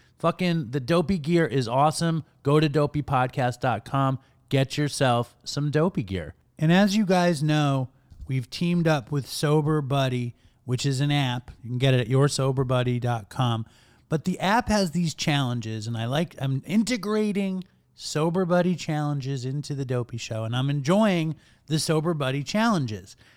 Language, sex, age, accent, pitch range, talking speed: English, male, 30-49, American, 125-165 Hz, 155 wpm